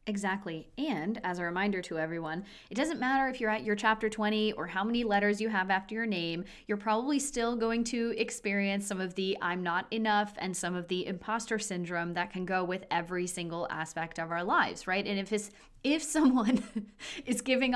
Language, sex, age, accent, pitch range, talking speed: English, female, 20-39, American, 190-245 Hz, 205 wpm